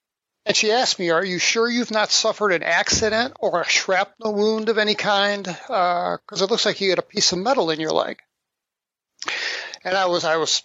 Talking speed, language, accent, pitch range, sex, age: 215 wpm, English, American, 175-205 Hz, male, 60-79